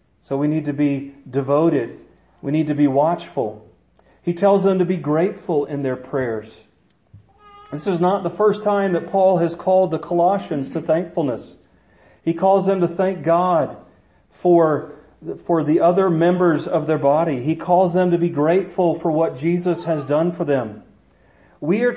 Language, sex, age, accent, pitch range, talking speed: English, male, 40-59, American, 150-185 Hz, 170 wpm